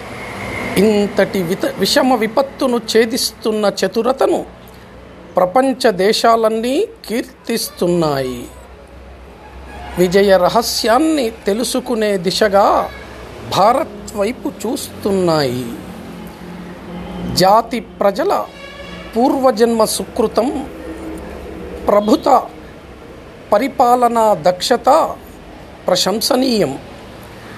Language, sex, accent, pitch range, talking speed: Telugu, male, native, 190-255 Hz, 50 wpm